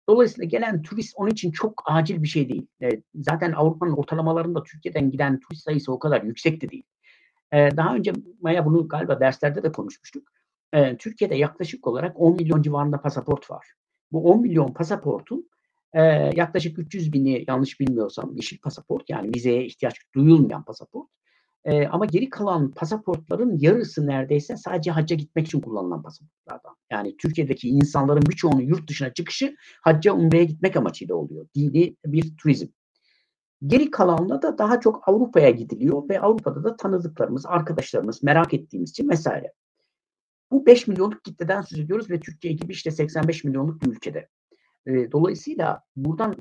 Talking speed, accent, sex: 145 wpm, native, male